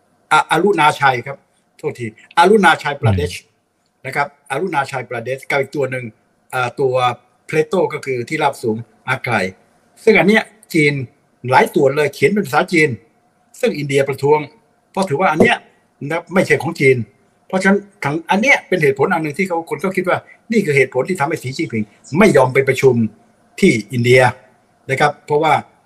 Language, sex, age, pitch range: Thai, male, 60-79, 130-170 Hz